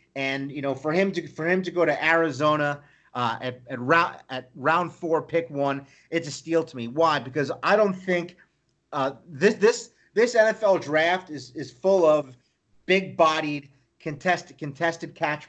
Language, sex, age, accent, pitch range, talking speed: English, male, 30-49, American, 135-165 Hz, 180 wpm